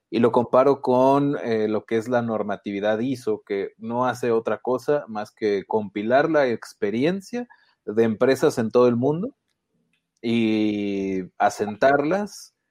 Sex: male